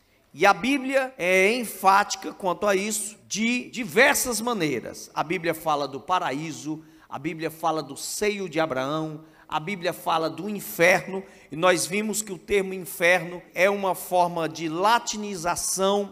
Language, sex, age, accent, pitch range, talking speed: Portuguese, male, 50-69, Brazilian, 170-210 Hz, 150 wpm